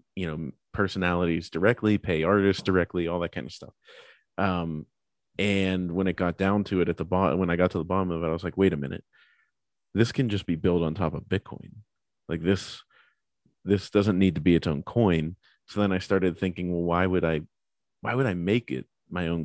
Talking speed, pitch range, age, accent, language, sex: 220 wpm, 80-95 Hz, 30-49, American, English, male